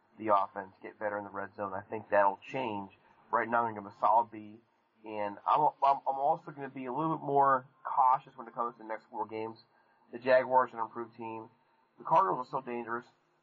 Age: 30-49